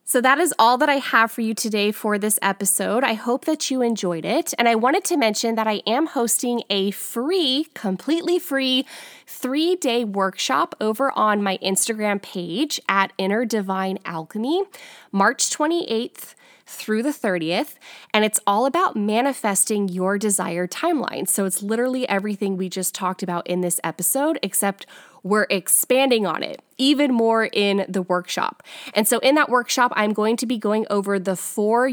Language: English